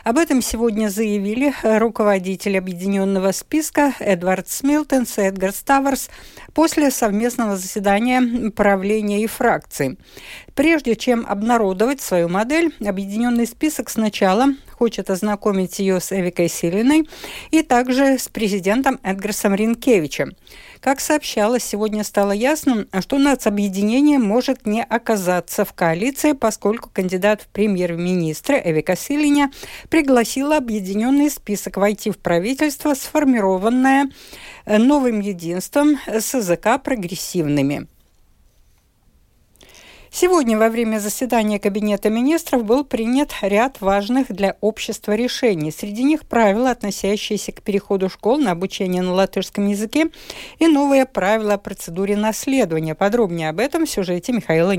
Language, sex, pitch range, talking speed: Russian, female, 195-260 Hz, 115 wpm